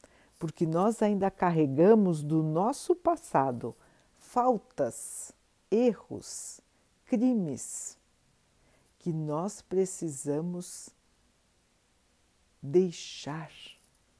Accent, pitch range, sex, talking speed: Brazilian, 145-210 Hz, female, 60 wpm